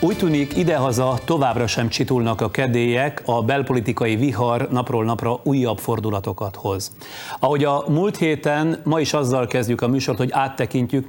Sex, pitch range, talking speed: male, 115-140 Hz, 150 wpm